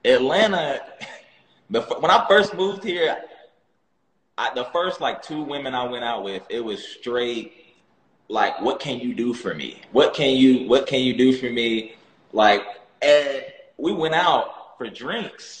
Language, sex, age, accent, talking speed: English, male, 20-39, American, 155 wpm